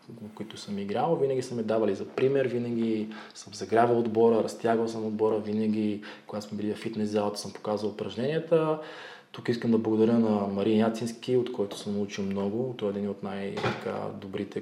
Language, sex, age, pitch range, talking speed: Bulgarian, male, 20-39, 105-125 Hz, 170 wpm